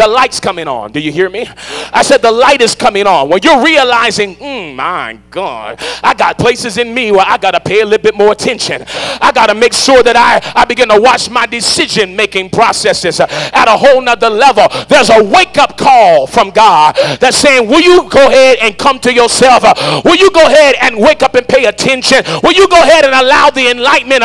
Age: 40-59